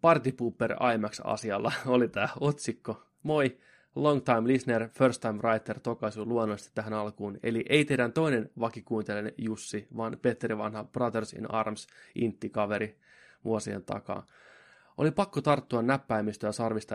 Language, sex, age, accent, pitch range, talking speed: Finnish, male, 20-39, native, 110-130 Hz, 130 wpm